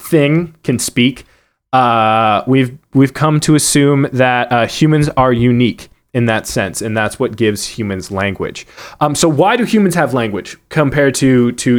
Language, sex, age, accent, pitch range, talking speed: English, male, 20-39, American, 115-150 Hz, 170 wpm